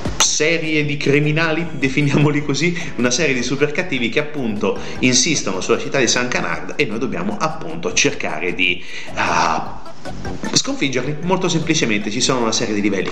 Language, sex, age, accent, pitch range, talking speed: Italian, male, 30-49, native, 105-150 Hz, 150 wpm